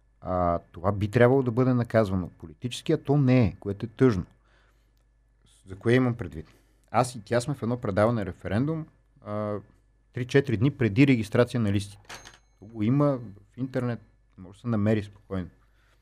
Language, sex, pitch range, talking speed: Bulgarian, male, 105-135 Hz, 155 wpm